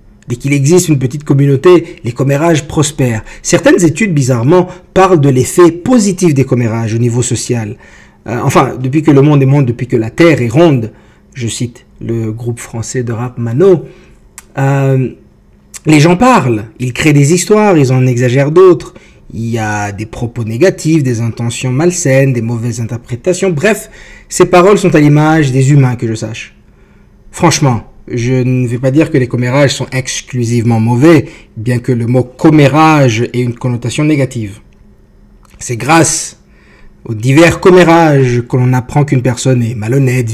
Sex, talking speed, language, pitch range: male, 165 wpm, English, 120-155 Hz